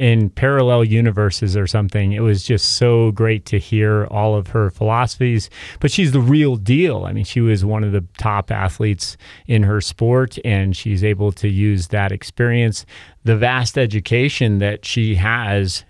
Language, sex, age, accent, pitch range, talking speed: English, male, 30-49, American, 100-115 Hz, 175 wpm